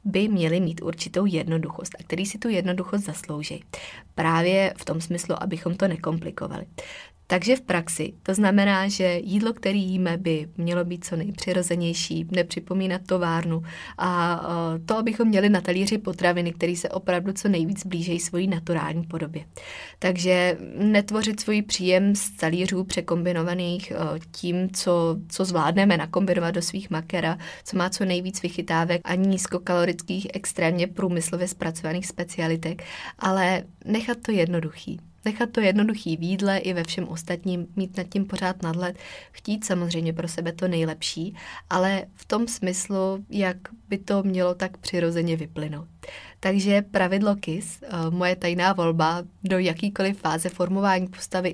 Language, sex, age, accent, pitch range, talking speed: Czech, female, 20-39, native, 170-195 Hz, 140 wpm